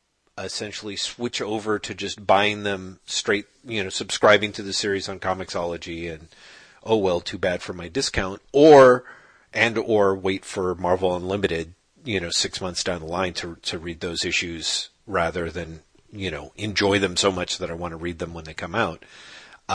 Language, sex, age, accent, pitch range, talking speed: English, male, 40-59, American, 100-140 Hz, 190 wpm